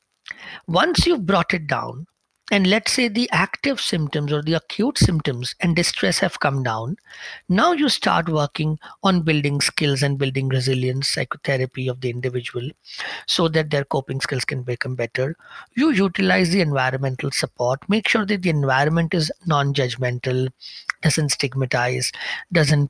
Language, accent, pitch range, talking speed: English, Indian, 140-210 Hz, 150 wpm